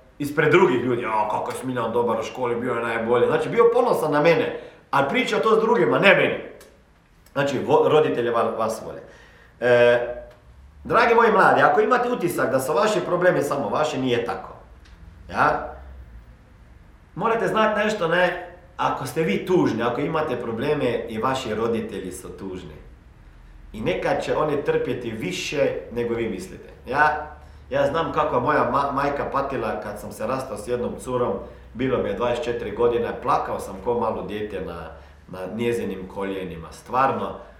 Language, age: Croatian, 40-59